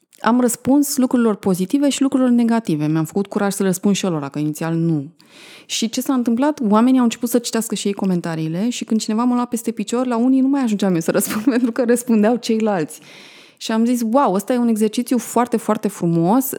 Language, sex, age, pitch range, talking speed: Romanian, female, 20-39, 190-245 Hz, 215 wpm